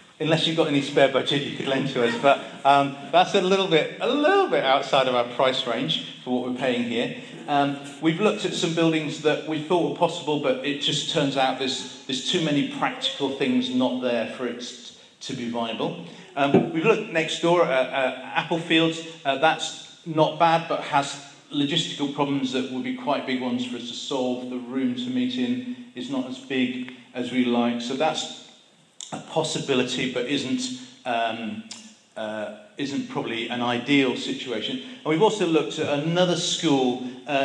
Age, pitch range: 40-59, 125-165 Hz